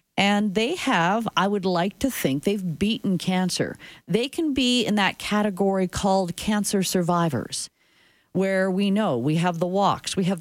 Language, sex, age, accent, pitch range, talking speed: English, female, 40-59, American, 155-210 Hz, 165 wpm